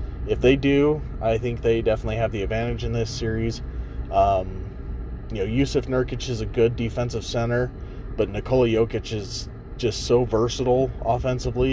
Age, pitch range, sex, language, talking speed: 20-39, 90-120 Hz, male, English, 160 wpm